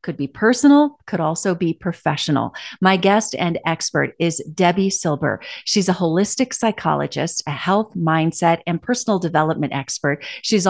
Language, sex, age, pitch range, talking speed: English, female, 40-59, 155-205 Hz, 145 wpm